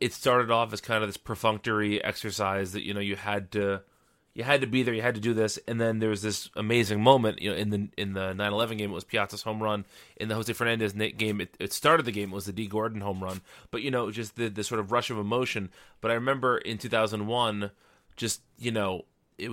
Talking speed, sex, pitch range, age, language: 265 wpm, male, 100-115 Hz, 30-49, English